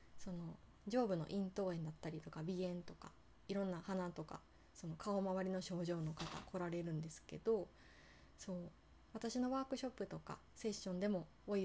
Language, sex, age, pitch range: Japanese, female, 20-39, 160-200 Hz